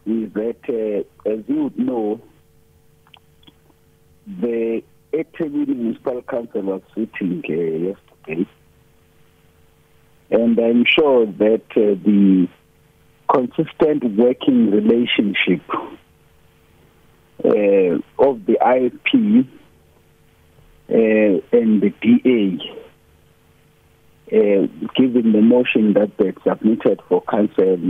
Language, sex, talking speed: English, male, 85 wpm